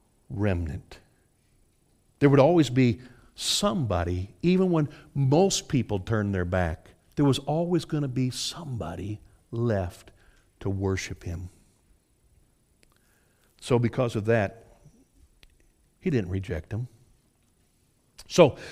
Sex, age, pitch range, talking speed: male, 60-79, 115-195 Hz, 105 wpm